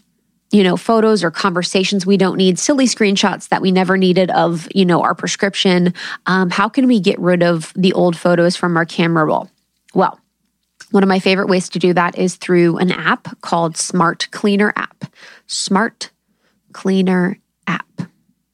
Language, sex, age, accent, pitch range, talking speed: English, female, 20-39, American, 180-210 Hz, 170 wpm